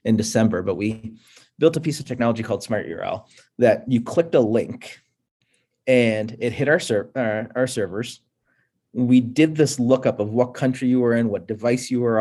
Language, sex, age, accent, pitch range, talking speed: English, male, 30-49, American, 110-125 Hz, 190 wpm